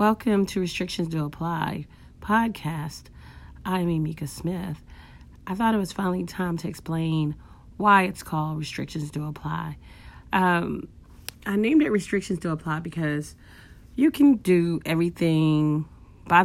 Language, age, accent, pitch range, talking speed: English, 40-59, American, 140-170 Hz, 135 wpm